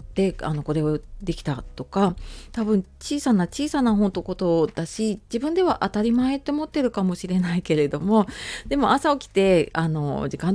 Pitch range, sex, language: 160-230 Hz, female, Japanese